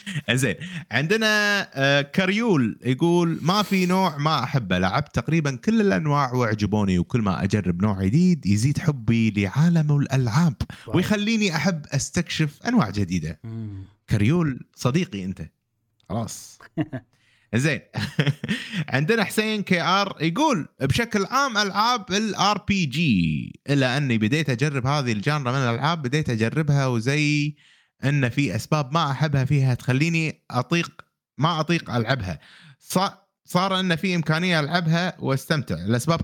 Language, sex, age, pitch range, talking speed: Arabic, male, 30-49, 125-175 Hz, 120 wpm